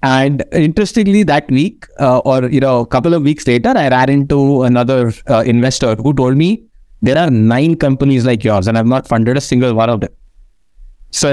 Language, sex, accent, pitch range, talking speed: English, male, Indian, 115-155 Hz, 205 wpm